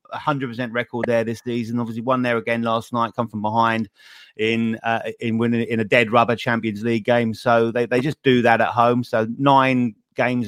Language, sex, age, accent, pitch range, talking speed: English, male, 30-49, British, 115-140 Hz, 205 wpm